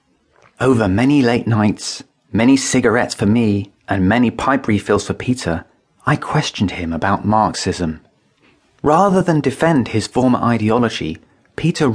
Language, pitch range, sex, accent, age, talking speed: English, 95-135 Hz, male, British, 30-49, 130 wpm